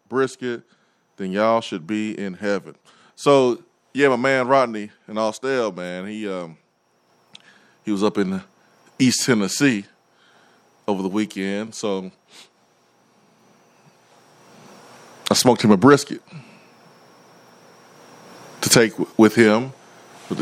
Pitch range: 95-120 Hz